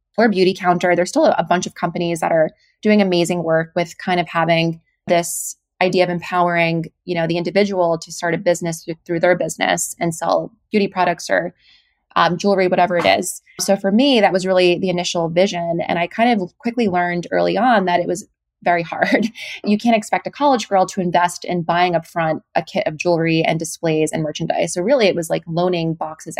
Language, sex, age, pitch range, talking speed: English, female, 20-39, 165-195 Hz, 205 wpm